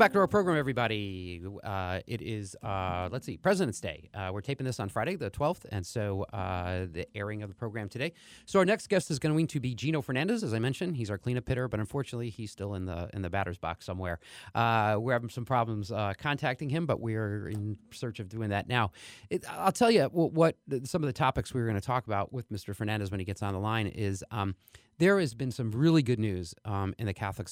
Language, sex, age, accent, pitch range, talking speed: English, male, 30-49, American, 100-130 Hz, 250 wpm